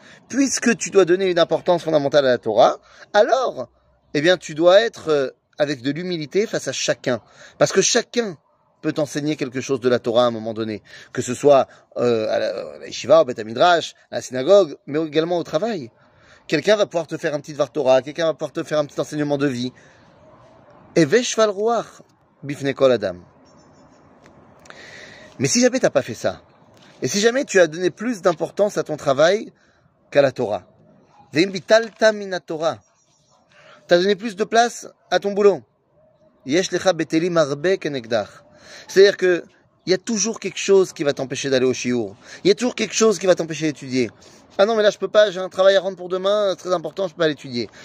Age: 30-49